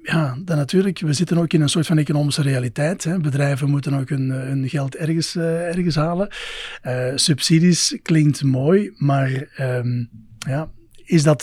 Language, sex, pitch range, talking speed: English, male, 140-170 Hz, 140 wpm